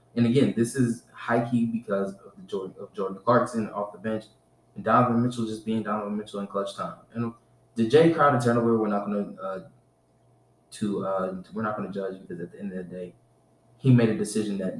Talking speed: 225 wpm